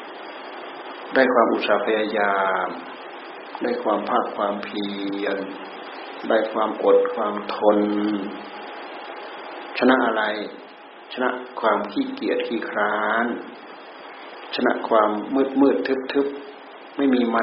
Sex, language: male, Thai